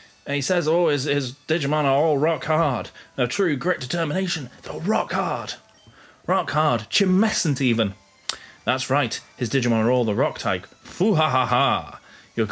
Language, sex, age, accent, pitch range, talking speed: English, male, 30-49, British, 110-175 Hz, 165 wpm